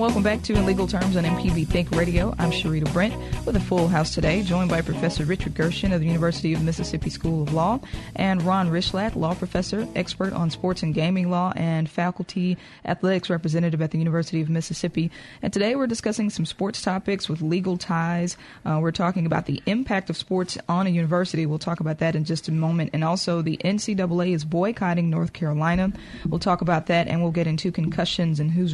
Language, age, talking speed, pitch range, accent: English, 20-39, 205 wpm, 160-180 Hz, American